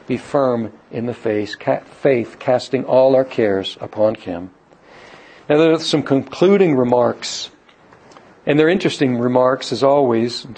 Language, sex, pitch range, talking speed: English, male, 130-170 Hz, 145 wpm